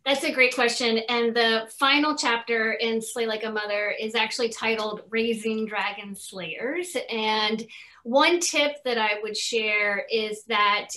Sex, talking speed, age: female, 155 wpm, 30-49